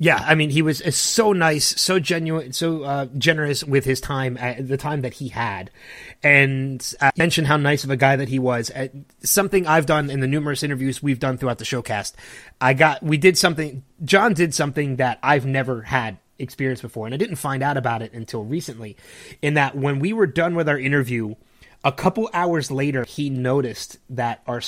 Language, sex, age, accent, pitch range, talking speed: English, male, 30-49, American, 125-160 Hz, 210 wpm